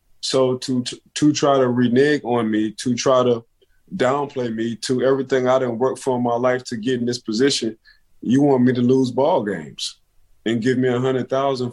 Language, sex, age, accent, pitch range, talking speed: English, male, 20-39, American, 120-140 Hz, 210 wpm